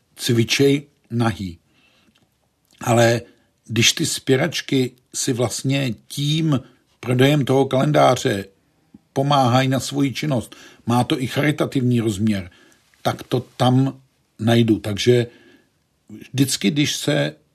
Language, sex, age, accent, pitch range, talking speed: Czech, male, 50-69, native, 115-135 Hz, 100 wpm